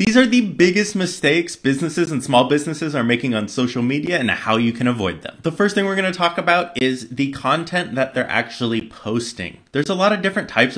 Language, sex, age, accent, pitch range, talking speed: English, male, 20-39, American, 100-130 Hz, 230 wpm